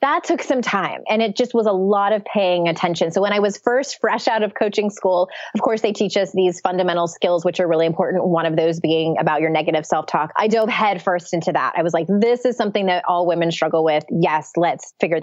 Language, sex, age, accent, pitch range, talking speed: English, female, 20-39, American, 175-220 Hz, 250 wpm